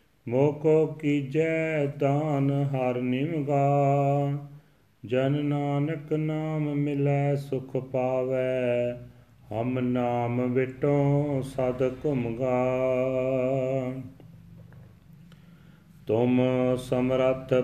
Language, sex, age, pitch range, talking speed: Punjabi, male, 40-59, 120-145 Hz, 65 wpm